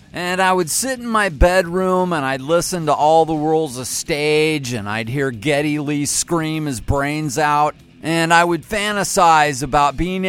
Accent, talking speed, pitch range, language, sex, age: American, 180 wpm, 135-175 Hz, English, male, 40-59